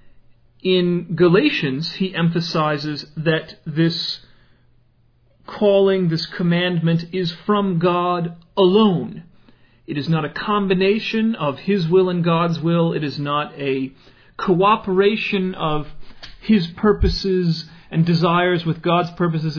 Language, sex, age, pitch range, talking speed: English, male, 40-59, 150-200 Hz, 115 wpm